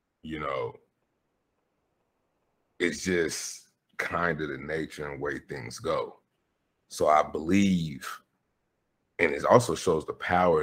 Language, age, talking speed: English, 30-49, 120 wpm